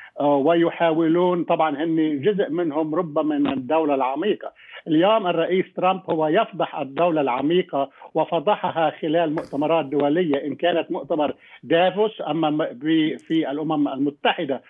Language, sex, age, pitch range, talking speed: Arabic, male, 50-69, 155-195 Hz, 110 wpm